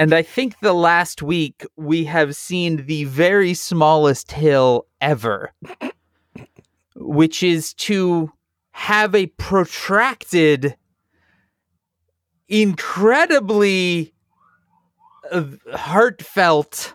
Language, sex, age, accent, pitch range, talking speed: English, male, 30-49, American, 120-175 Hz, 80 wpm